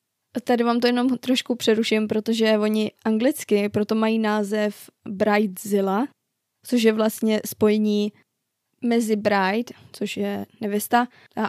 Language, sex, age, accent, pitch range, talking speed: Czech, female, 20-39, native, 205-235 Hz, 115 wpm